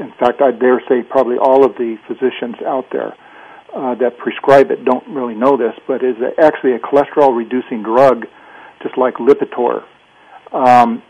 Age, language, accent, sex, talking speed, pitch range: 50-69, English, American, male, 160 wpm, 125-140 Hz